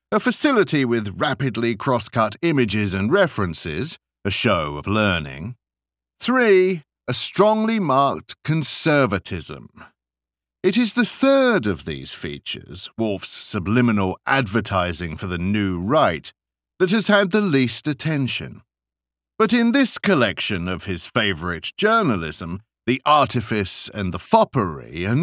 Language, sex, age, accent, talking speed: English, male, 50-69, British, 120 wpm